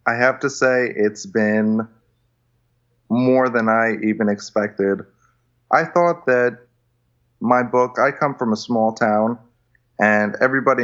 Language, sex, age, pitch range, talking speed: English, male, 30-49, 110-135 Hz, 135 wpm